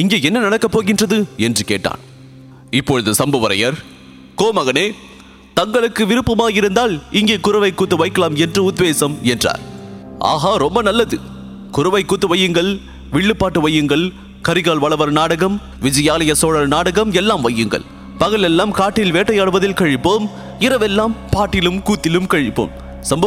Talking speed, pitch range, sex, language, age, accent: 115 wpm, 130-190 Hz, male, English, 30-49, Indian